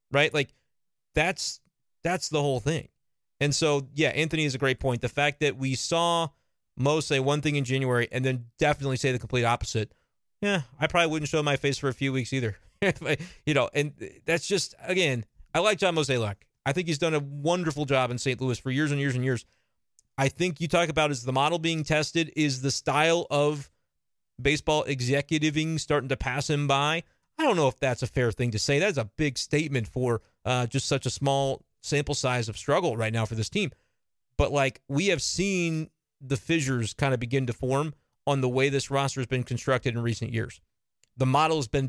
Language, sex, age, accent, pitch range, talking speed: English, male, 30-49, American, 125-155 Hz, 210 wpm